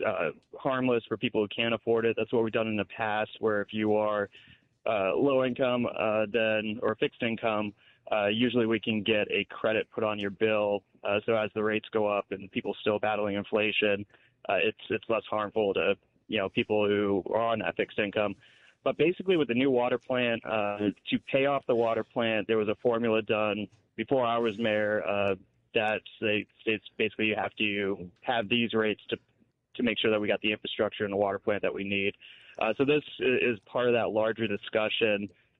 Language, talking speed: English, 210 wpm